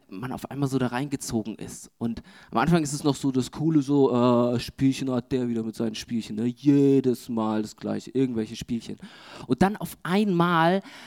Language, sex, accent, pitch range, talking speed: German, male, German, 125-180 Hz, 190 wpm